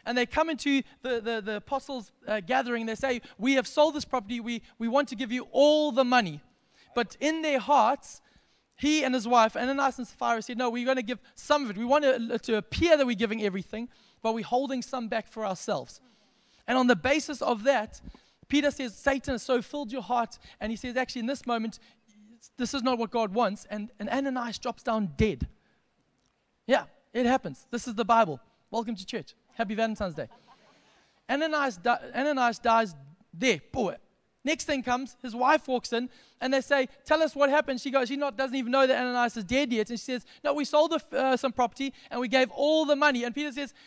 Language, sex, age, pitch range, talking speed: English, male, 20-39, 235-285 Hz, 220 wpm